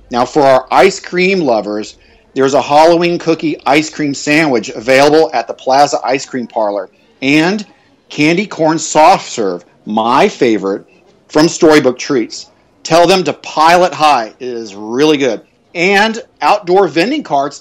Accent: American